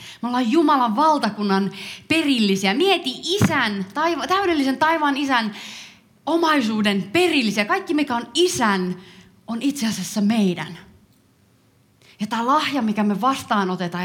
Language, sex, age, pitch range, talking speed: Finnish, female, 30-49, 175-250 Hz, 110 wpm